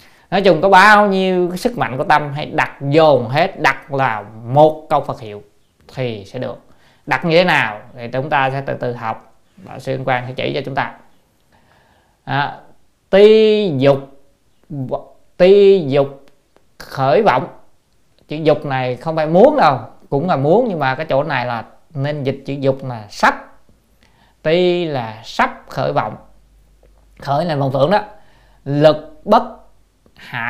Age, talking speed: 20-39, 165 wpm